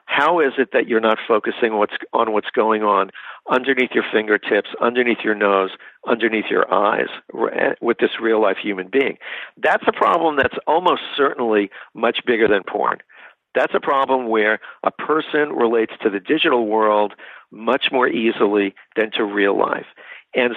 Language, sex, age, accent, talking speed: English, male, 60-79, American, 160 wpm